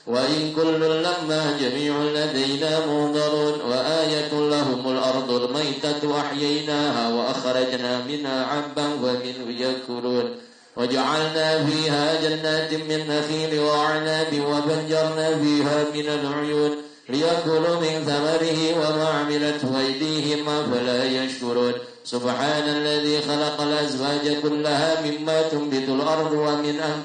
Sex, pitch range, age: male, 135-155 Hz, 50-69